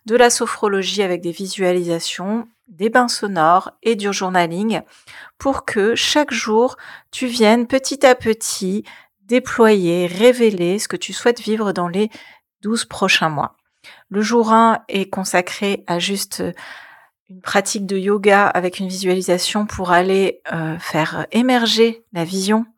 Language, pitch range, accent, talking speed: French, 185-230 Hz, French, 140 wpm